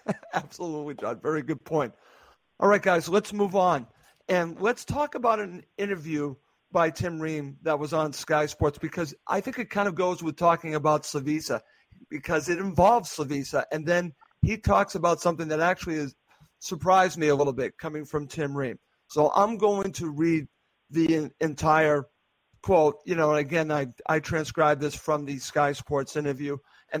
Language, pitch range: English, 150-180 Hz